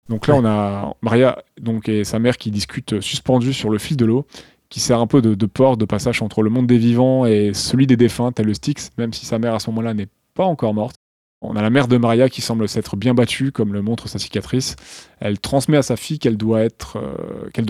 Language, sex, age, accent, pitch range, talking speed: French, male, 20-39, French, 110-130 Hz, 255 wpm